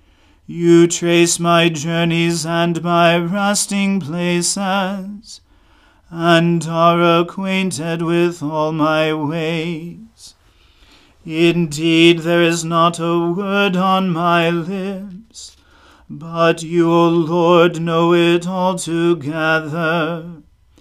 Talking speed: 90 wpm